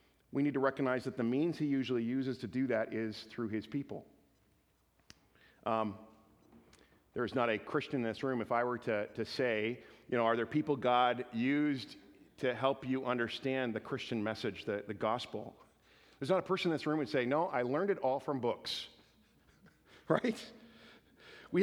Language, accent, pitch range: English, American, 135-215 Hz